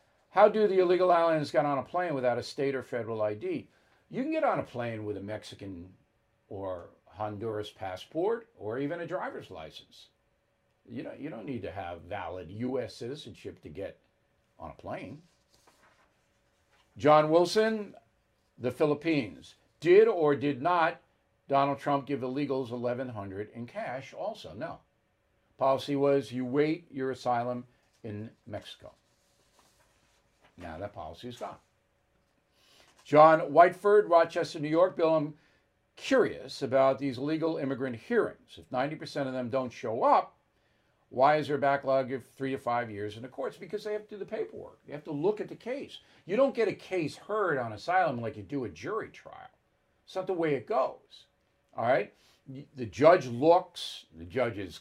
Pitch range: 120-160 Hz